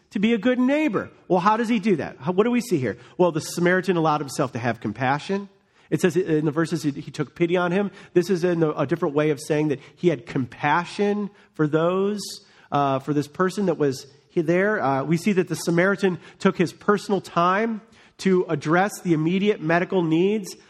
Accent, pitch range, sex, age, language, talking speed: American, 170-215 Hz, male, 40-59, English, 215 wpm